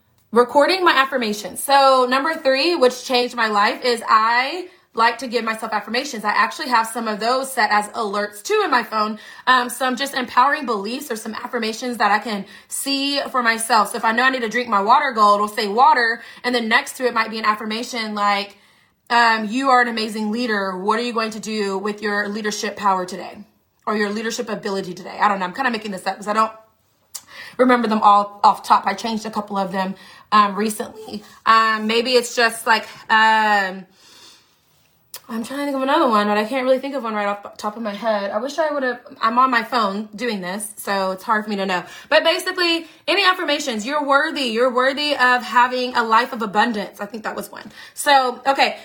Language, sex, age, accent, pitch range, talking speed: English, female, 20-39, American, 210-255 Hz, 220 wpm